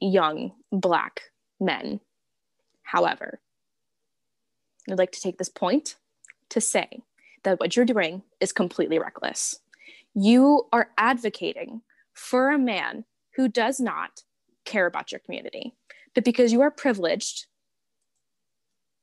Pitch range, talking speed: 215-280 Hz, 115 wpm